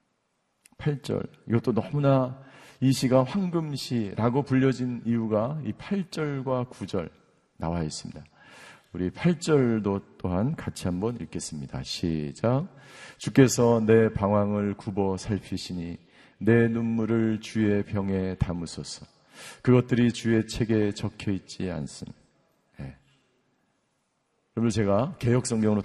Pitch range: 105-145 Hz